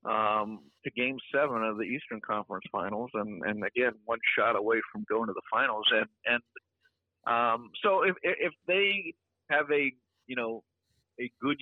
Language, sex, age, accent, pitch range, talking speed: English, male, 50-69, American, 105-125 Hz, 170 wpm